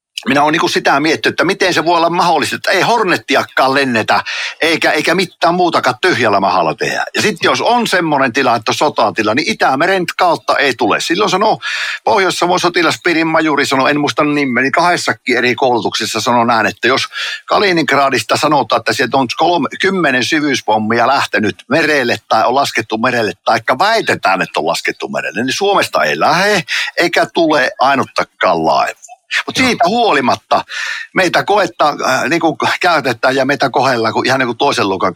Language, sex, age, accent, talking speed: Finnish, male, 60-79, native, 160 wpm